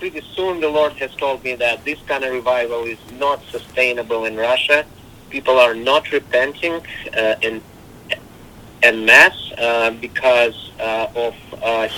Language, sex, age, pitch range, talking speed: English, male, 50-69, 115-145 Hz, 145 wpm